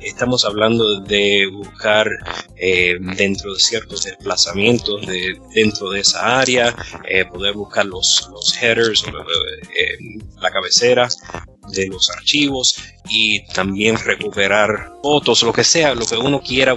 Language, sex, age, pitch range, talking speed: Spanish, male, 30-49, 95-120 Hz, 130 wpm